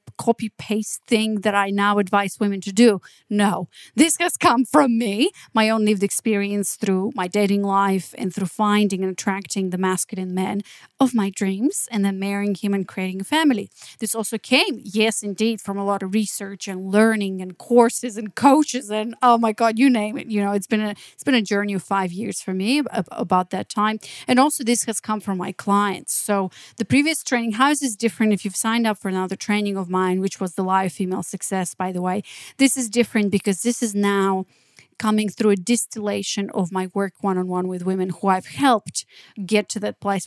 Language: English